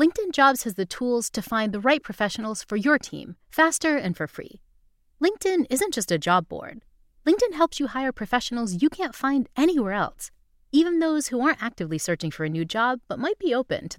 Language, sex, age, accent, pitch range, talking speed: English, female, 30-49, American, 195-300 Hz, 205 wpm